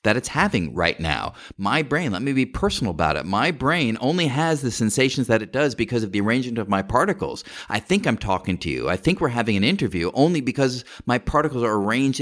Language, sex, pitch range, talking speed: English, male, 100-130 Hz, 230 wpm